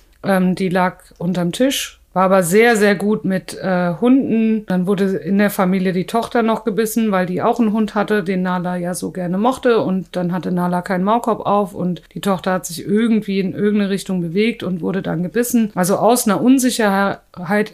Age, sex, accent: 50-69, female, German